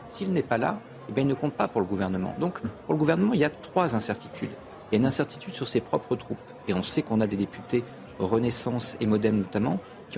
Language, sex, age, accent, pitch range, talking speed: French, male, 40-59, French, 110-145 Hz, 240 wpm